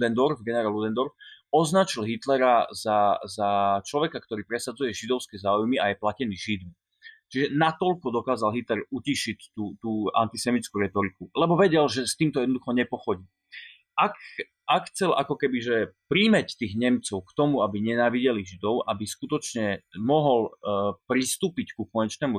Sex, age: male, 30-49